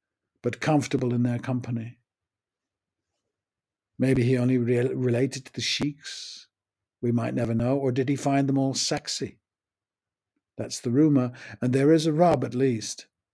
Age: 60-79